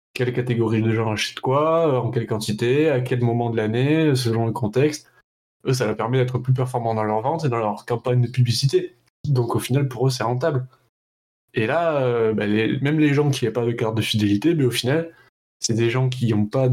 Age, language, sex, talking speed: 20-39, French, male, 225 wpm